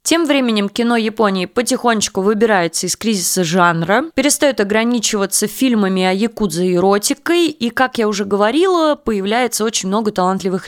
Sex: female